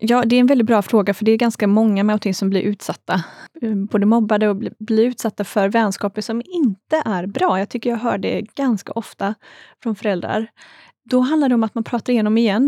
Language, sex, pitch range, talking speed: Swedish, female, 205-245 Hz, 215 wpm